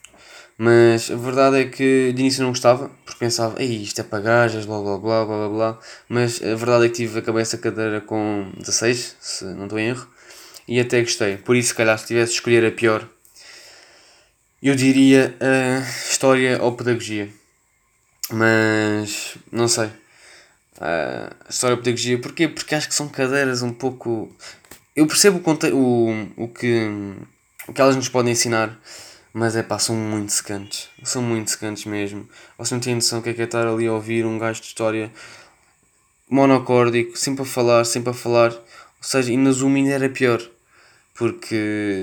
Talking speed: 185 wpm